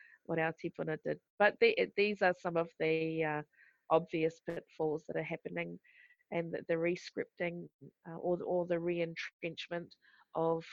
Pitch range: 155-175 Hz